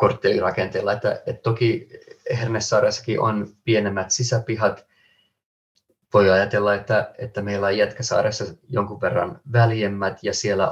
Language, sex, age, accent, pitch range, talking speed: Finnish, male, 30-49, native, 95-120 Hz, 110 wpm